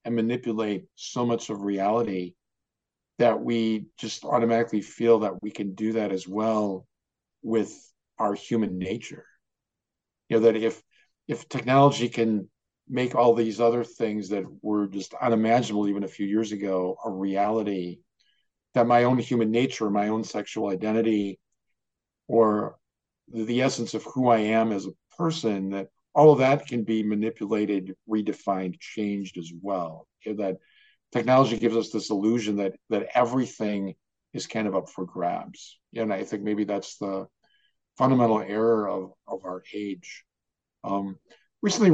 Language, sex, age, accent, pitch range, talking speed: English, male, 50-69, American, 100-120 Hz, 150 wpm